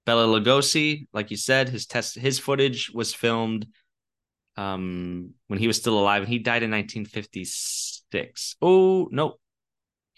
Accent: American